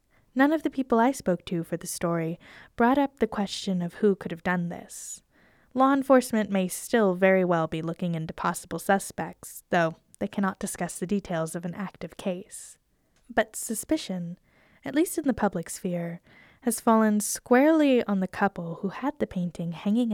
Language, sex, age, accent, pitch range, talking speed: English, female, 10-29, American, 175-230 Hz, 180 wpm